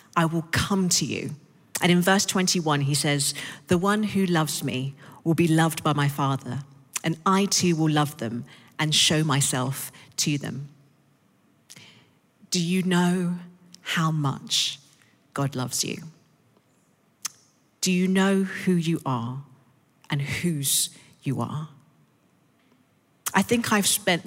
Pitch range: 140-175 Hz